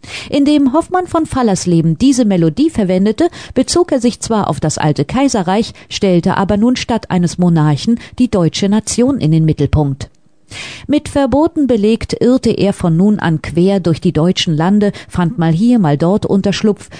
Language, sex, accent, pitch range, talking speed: German, female, German, 165-245 Hz, 160 wpm